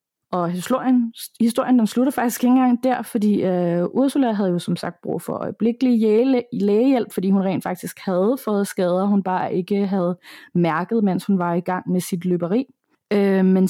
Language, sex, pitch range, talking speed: Danish, female, 185-235 Hz, 175 wpm